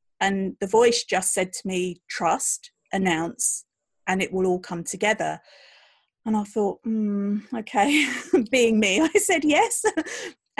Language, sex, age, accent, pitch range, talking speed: English, female, 40-59, British, 180-220 Hz, 140 wpm